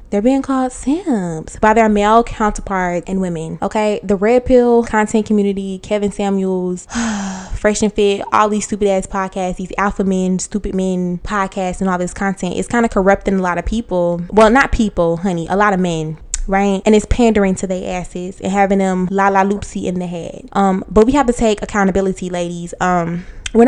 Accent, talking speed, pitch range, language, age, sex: American, 200 wpm, 175-210 Hz, English, 20-39, female